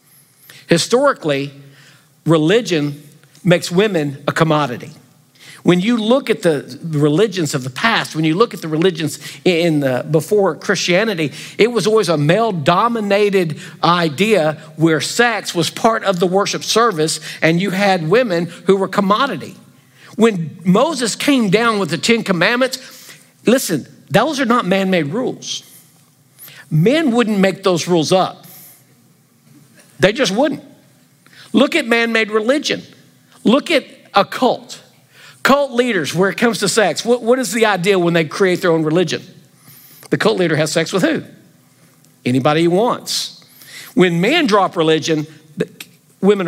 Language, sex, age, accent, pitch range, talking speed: English, male, 50-69, American, 150-210 Hz, 140 wpm